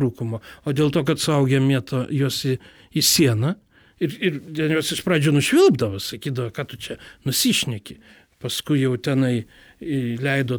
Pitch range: 140-195 Hz